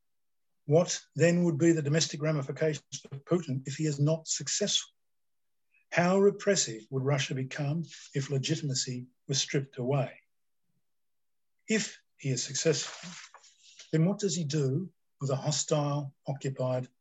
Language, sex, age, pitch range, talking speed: English, male, 50-69, 125-160 Hz, 130 wpm